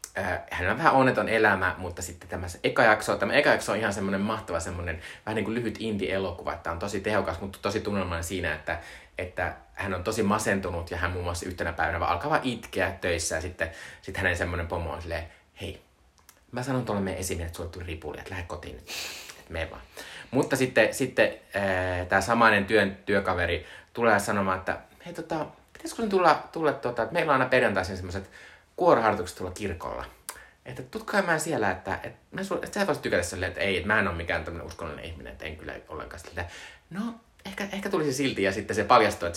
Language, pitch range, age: Finnish, 85-110 Hz, 30-49